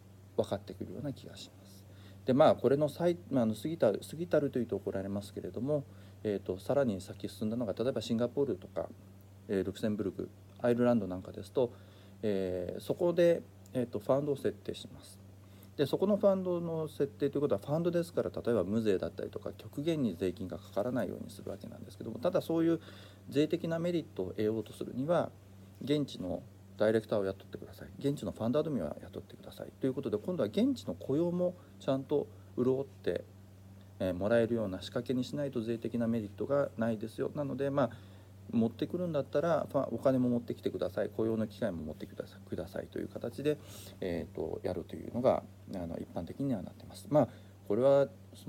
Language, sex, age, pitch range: Japanese, male, 40-59, 100-140 Hz